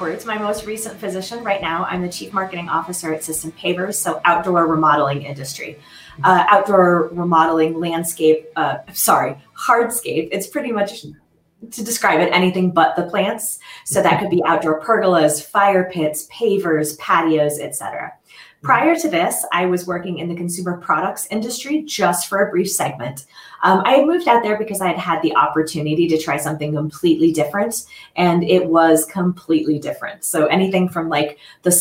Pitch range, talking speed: 155-190 Hz, 170 wpm